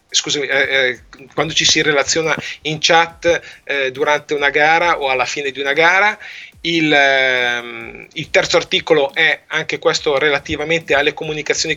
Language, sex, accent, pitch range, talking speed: Italian, male, native, 140-165 Hz, 150 wpm